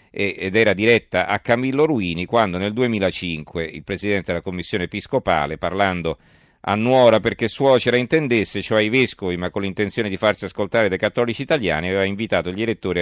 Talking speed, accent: 165 wpm, native